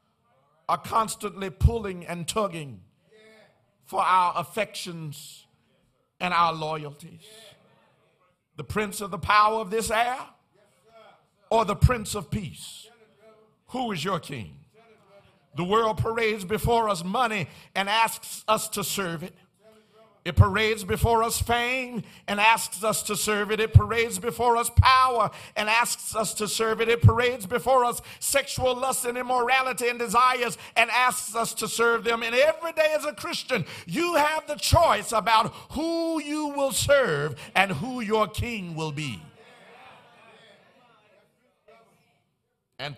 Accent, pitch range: American, 175-235 Hz